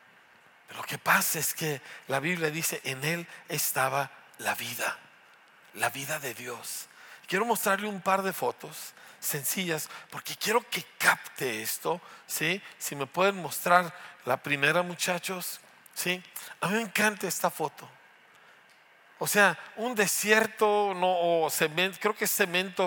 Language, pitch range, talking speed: Spanish, 165-200 Hz, 145 wpm